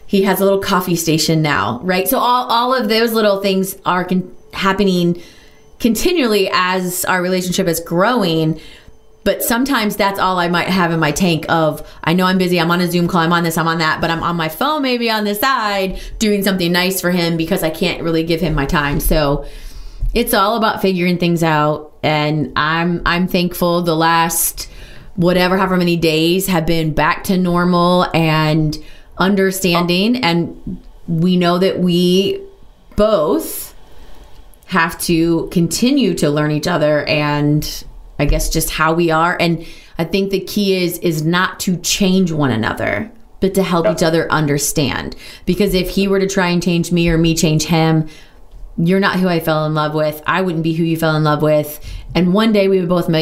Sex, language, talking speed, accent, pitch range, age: female, English, 190 wpm, American, 160-190 Hz, 30-49